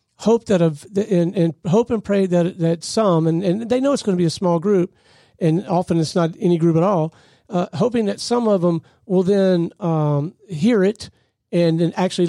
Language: English